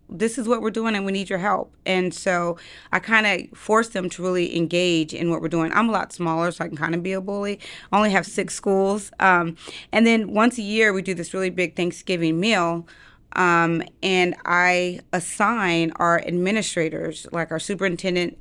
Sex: female